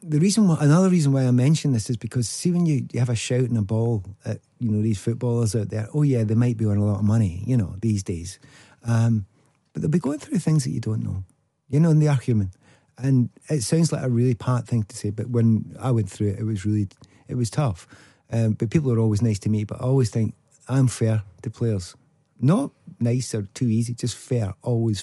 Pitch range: 110-135 Hz